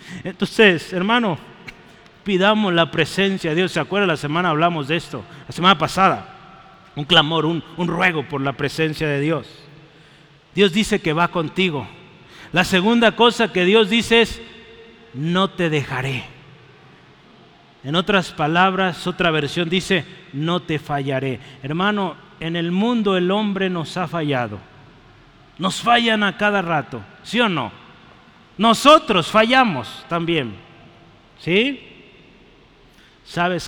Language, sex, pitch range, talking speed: Spanish, male, 150-225 Hz, 130 wpm